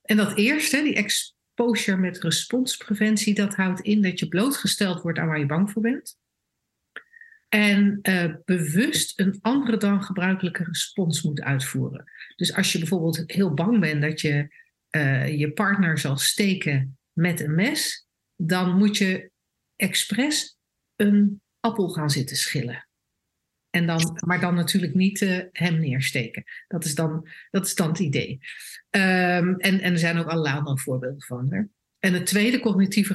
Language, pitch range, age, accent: Dutch, 165-205 Hz, 50-69, Dutch